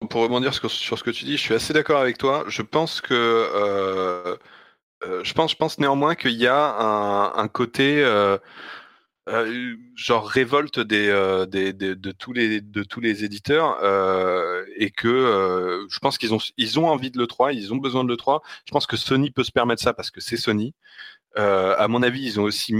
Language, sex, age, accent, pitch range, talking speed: French, male, 30-49, French, 105-135 Hz, 215 wpm